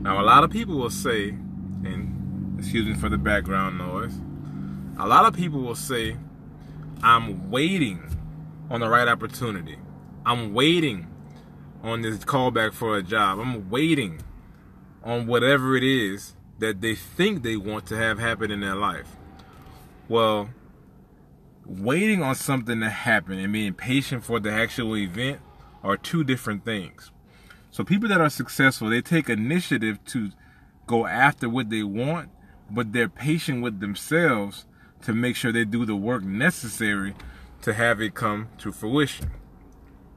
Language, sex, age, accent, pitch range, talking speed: English, male, 20-39, American, 100-130 Hz, 150 wpm